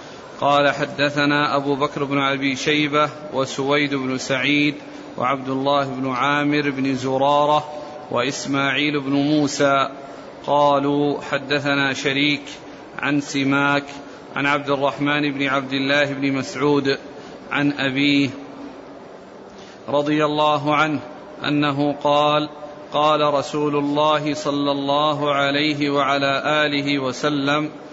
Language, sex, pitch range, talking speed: Arabic, male, 140-150 Hz, 105 wpm